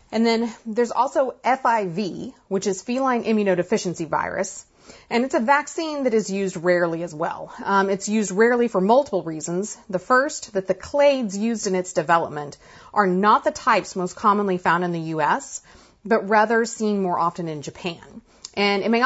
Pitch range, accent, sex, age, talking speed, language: 180-235 Hz, American, female, 30-49, 175 wpm, English